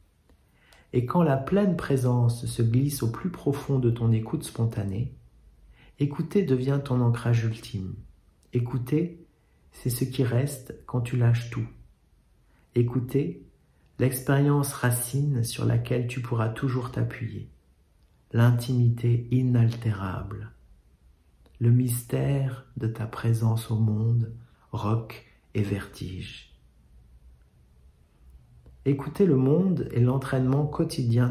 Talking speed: 105 wpm